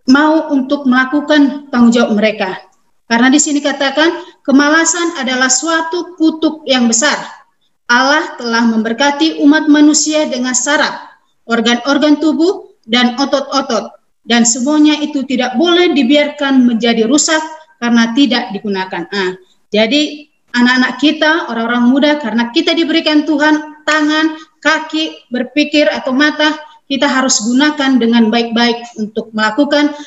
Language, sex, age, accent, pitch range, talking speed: Indonesian, female, 30-49, native, 240-305 Hz, 120 wpm